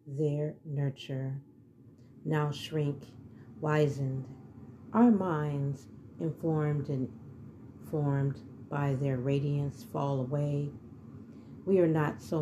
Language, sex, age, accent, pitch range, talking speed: English, female, 40-59, American, 125-155 Hz, 90 wpm